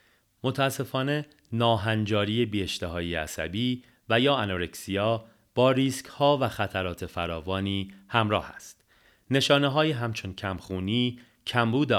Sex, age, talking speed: male, 40-59, 100 wpm